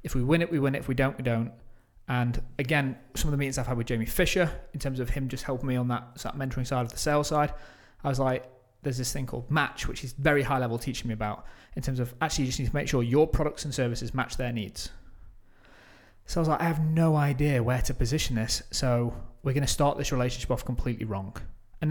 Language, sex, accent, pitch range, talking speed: English, male, British, 115-140 Hz, 265 wpm